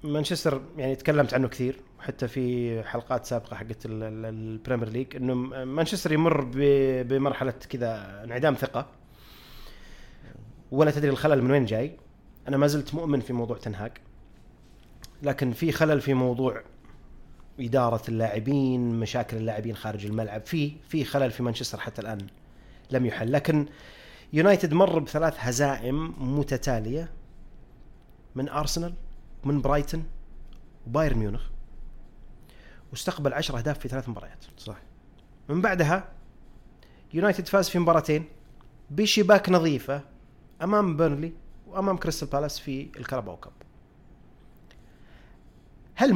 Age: 30-49